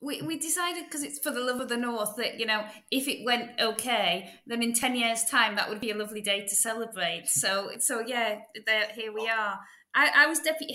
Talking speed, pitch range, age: 230 wpm, 195-235 Hz, 20-39